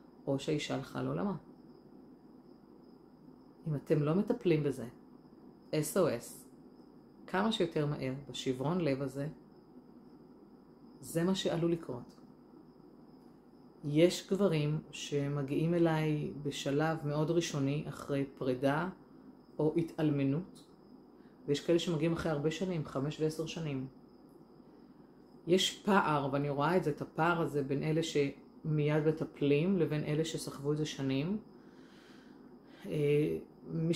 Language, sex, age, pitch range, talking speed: Hebrew, female, 30-49, 145-170 Hz, 110 wpm